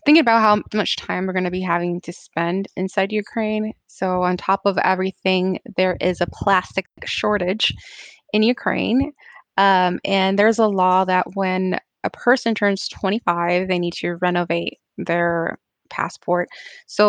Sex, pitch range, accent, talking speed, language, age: female, 180-215 Hz, American, 155 wpm, English, 20-39